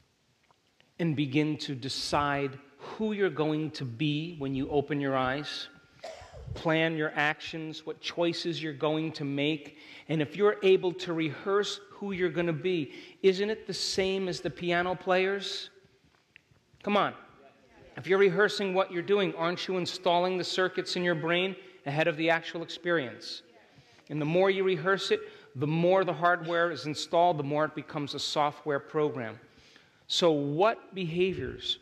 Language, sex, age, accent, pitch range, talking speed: English, male, 40-59, American, 145-180 Hz, 160 wpm